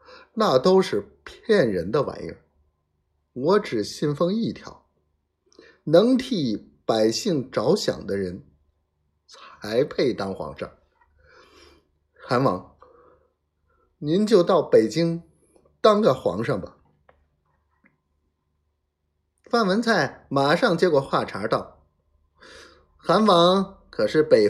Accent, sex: native, male